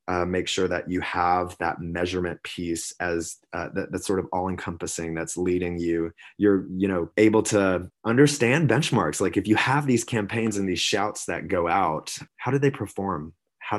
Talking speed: 185 wpm